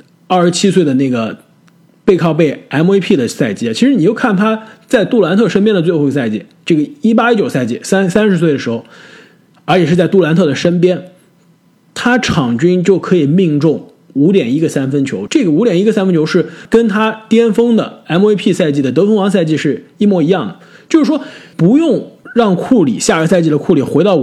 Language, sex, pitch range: Chinese, male, 140-215 Hz